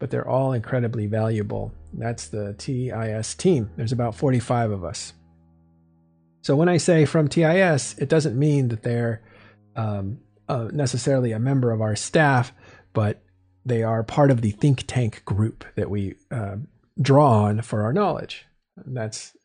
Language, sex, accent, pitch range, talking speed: English, male, American, 110-150 Hz, 160 wpm